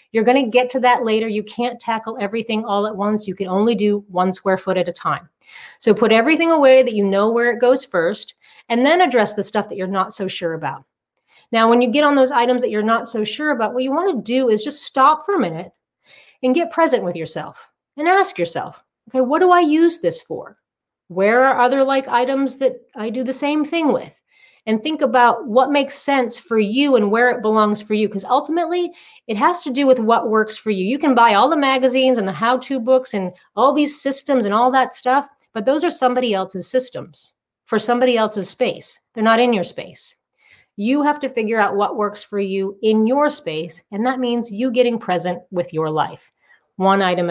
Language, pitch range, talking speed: English, 205-265 Hz, 225 wpm